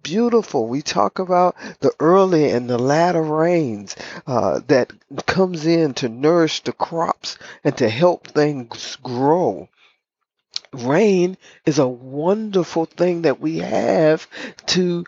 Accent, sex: American, male